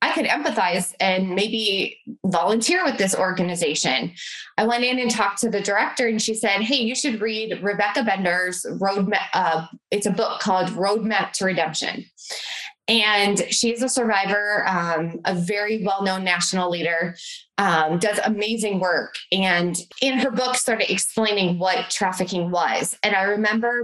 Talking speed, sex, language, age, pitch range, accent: 155 wpm, female, English, 20-39, 185-230 Hz, American